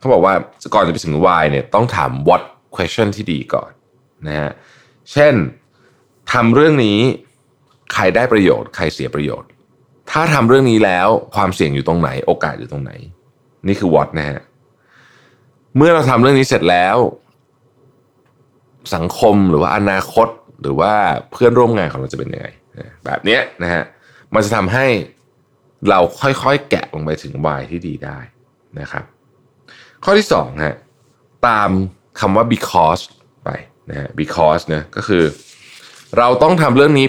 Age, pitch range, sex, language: 20-39, 80-130 Hz, male, Thai